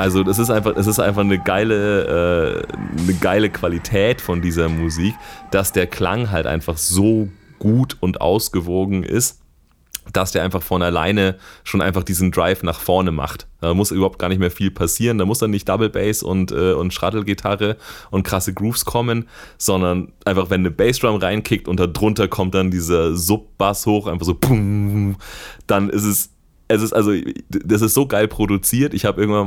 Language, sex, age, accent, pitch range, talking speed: German, male, 30-49, German, 90-105 Hz, 185 wpm